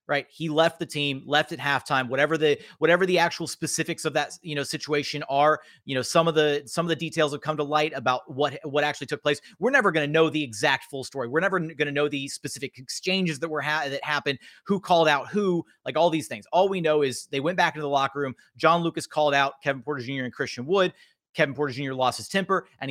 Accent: American